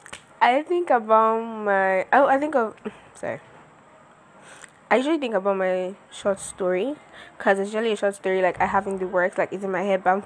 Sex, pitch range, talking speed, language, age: female, 190-220 Hz, 200 wpm, English, 10-29